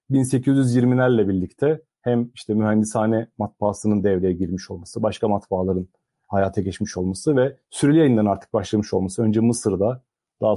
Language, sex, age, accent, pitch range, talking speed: Turkish, male, 40-59, native, 105-130 Hz, 125 wpm